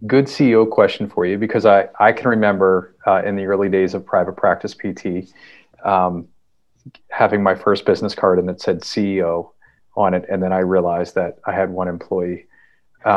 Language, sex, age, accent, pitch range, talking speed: English, male, 30-49, American, 90-110 Hz, 180 wpm